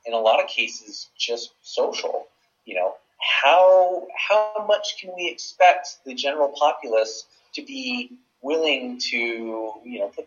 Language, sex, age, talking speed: English, male, 30-49, 145 wpm